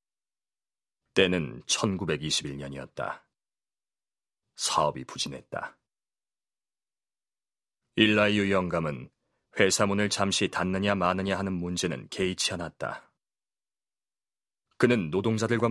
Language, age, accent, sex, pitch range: Korean, 30-49, native, male, 85-105 Hz